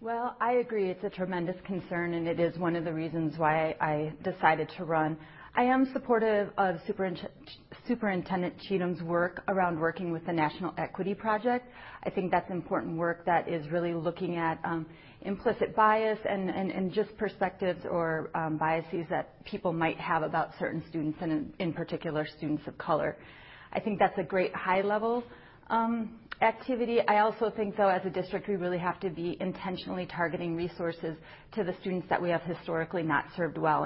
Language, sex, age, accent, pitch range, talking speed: English, female, 30-49, American, 165-195 Hz, 180 wpm